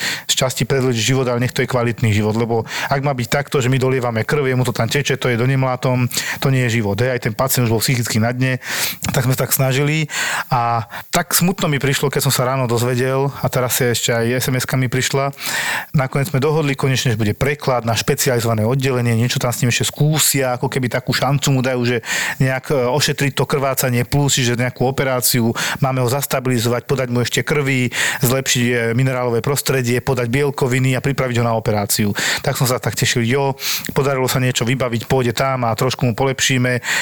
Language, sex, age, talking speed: Slovak, male, 40-59, 205 wpm